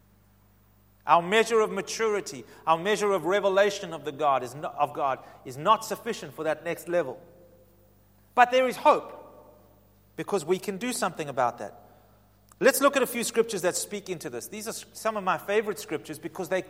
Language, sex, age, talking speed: English, male, 30-49, 185 wpm